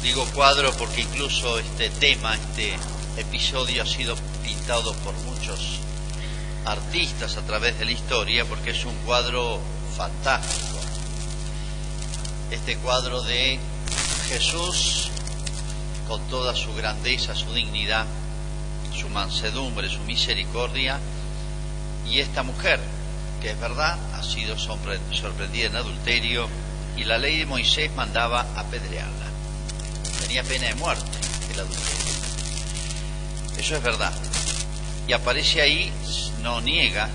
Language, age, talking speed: Spanish, 40-59, 110 wpm